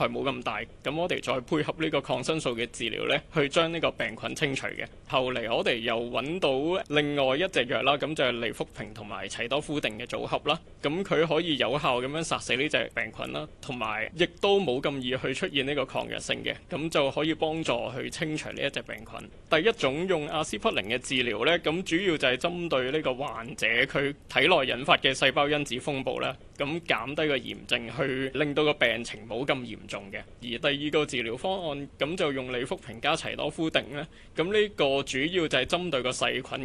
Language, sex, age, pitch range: Chinese, male, 20-39, 120-160 Hz